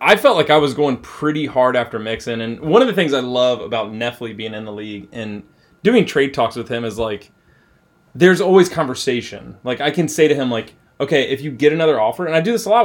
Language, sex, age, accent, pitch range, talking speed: English, male, 20-39, American, 115-160 Hz, 245 wpm